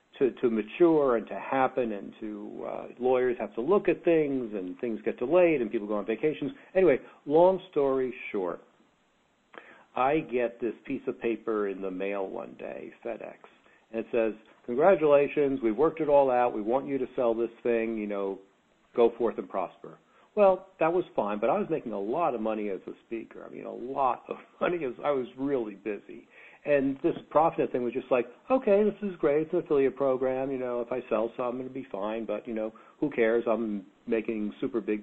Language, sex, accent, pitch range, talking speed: English, male, American, 105-140 Hz, 205 wpm